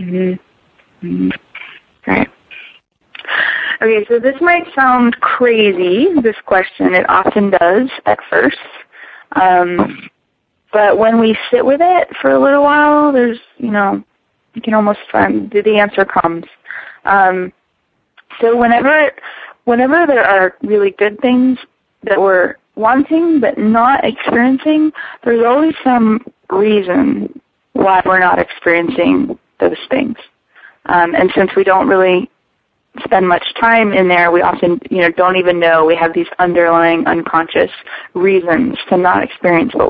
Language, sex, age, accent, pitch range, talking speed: English, female, 20-39, American, 180-245 Hz, 135 wpm